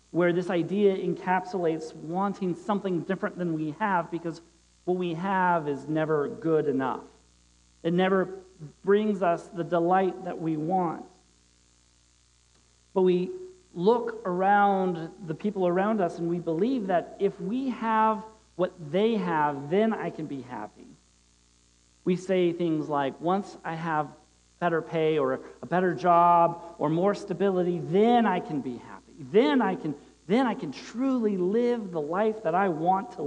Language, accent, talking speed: English, American, 155 wpm